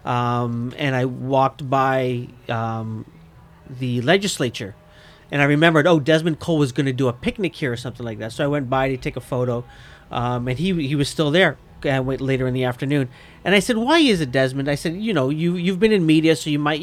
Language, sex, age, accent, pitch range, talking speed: English, male, 40-59, American, 130-165 Hz, 230 wpm